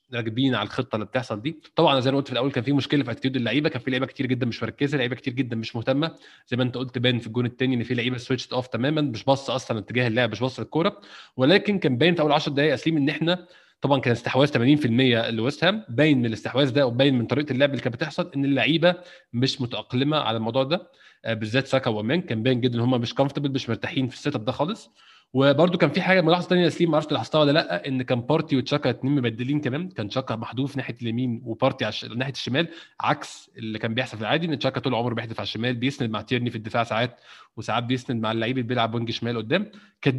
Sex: male